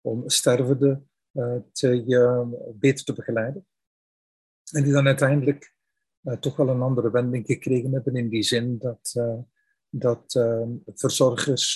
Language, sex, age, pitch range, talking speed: Dutch, male, 50-69, 120-145 Hz, 120 wpm